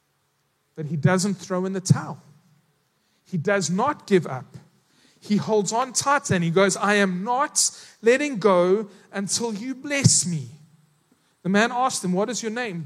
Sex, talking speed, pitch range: male, 170 wpm, 160-230 Hz